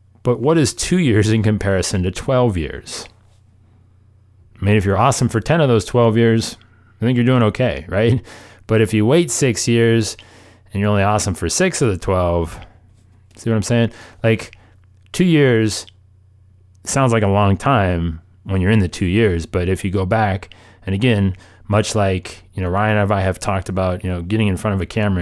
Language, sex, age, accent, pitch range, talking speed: English, male, 30-49, American, 95-115 Hz, 200 wpm